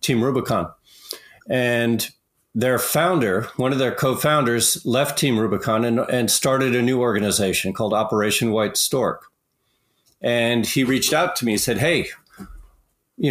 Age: 40-59